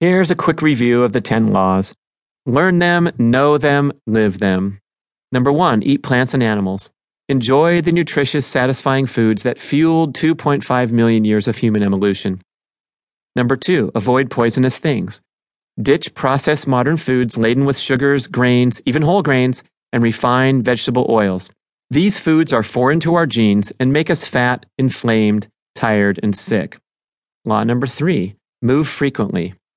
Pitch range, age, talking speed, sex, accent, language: 115-145 Hz, 30-49, 145 wpm, male, American, English